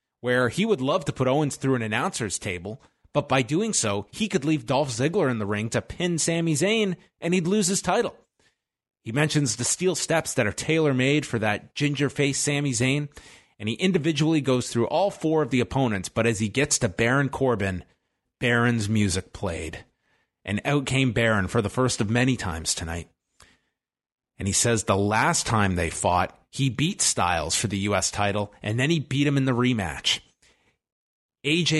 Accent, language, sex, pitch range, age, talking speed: American, English, male, 100-140 Hz, 30-49, 190 wpm